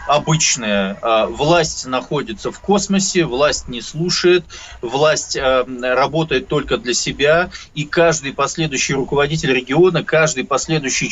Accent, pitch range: native, 130-165 Hz